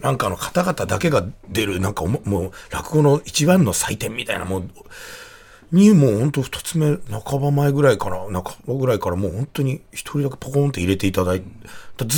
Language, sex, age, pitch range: Japanese, male, 40-59, 95-140 Hz